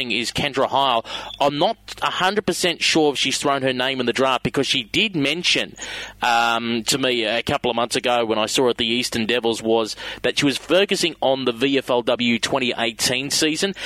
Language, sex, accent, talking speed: English, male, Australian, 200 wpm